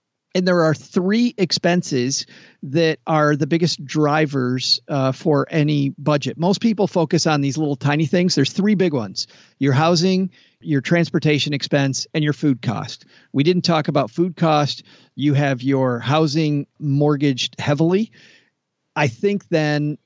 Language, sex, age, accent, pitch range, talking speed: English, male, 50-69, American, 140-170 Hz, 150 wpm